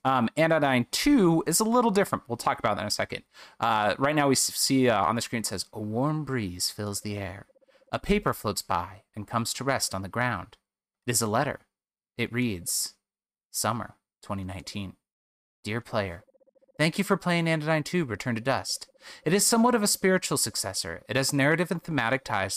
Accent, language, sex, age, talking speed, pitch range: American, English, male, 30-49, 195 wpm, 110-165 Hz